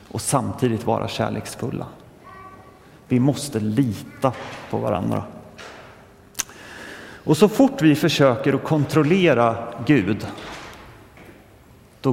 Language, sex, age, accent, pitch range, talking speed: Swedish, male, 30-49, native, 110-130 Hz, 85 wpm